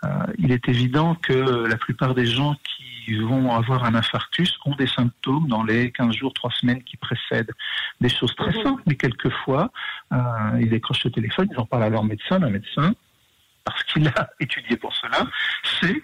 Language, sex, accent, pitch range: French, male, French, 115-145 Hz